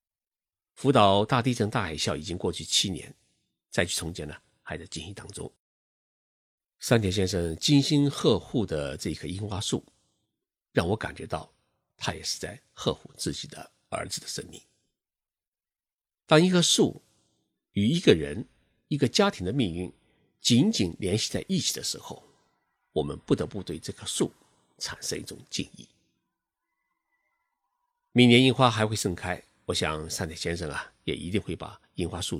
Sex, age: male, 50-69